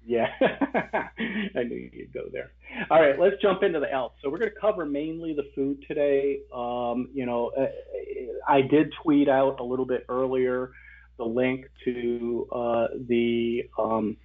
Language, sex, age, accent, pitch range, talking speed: English, male, 40-59, American, 115-135 Hz, 165 wpm